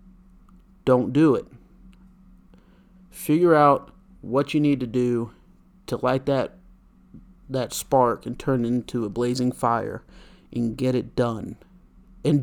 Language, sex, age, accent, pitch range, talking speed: English, male, 30-49, American, 125-185 Hz, 130 wpm